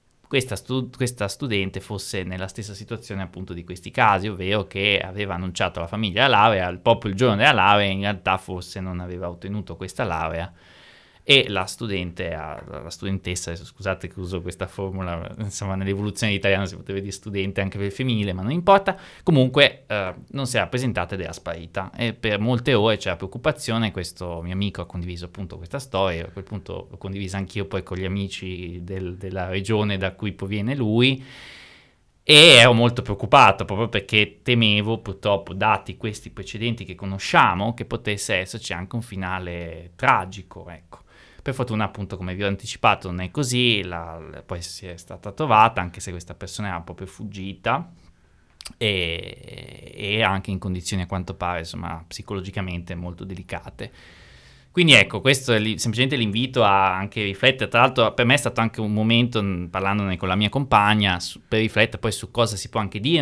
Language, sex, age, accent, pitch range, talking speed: Italian, male, 20-39, native, 95-115 Hz, 175 wpm